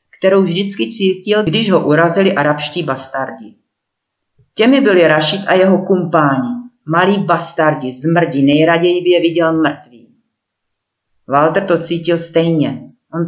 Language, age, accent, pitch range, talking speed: Czech, 40-59, native, 150-195 Hz, 120 wpm